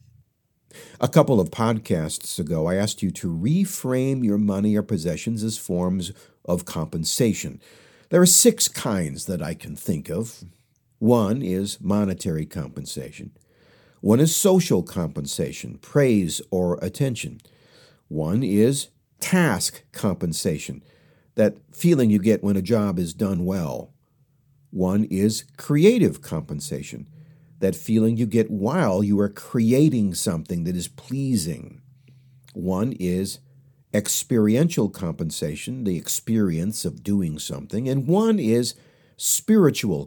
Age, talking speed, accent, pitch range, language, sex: 50-69, 120 wpm, American, 100-140 Hz, English, male